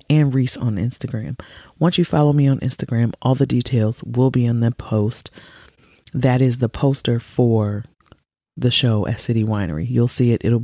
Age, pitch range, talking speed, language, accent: 30-49, 115-145 Hz, 180 wpm, English, American